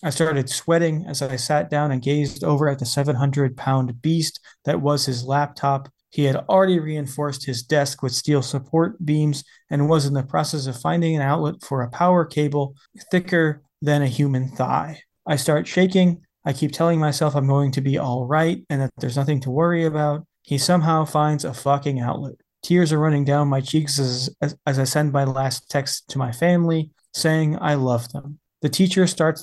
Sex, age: male, 30-49